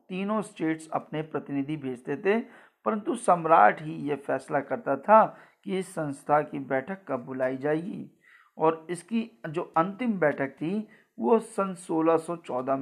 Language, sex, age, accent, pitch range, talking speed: Hindi, male, 50-69, native, 145-180 Hz, 140 wpm